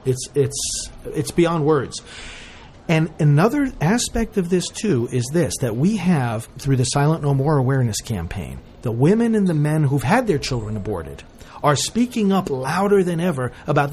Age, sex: 40-59, male